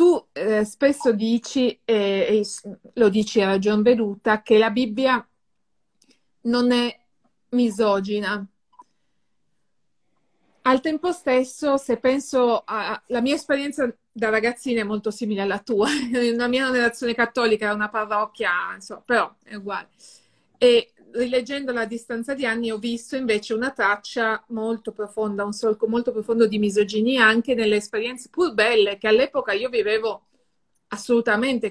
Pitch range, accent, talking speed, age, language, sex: 215-255 Hz, native, 135 wpm, 30-49, Italian, female